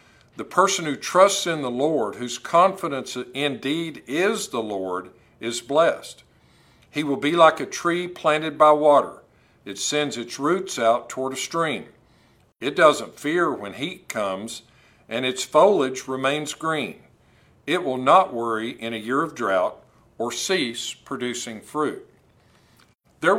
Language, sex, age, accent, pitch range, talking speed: English, male, 50-69, American, 115-150 Hz, 145 wpm